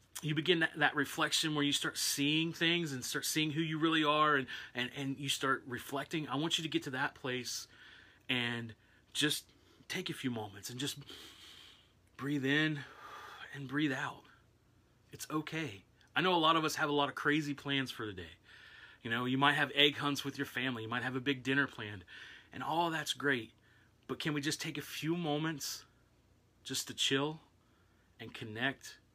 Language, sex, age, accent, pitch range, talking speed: English, male, 30-49, American, 110-145 Hz, 195 wpm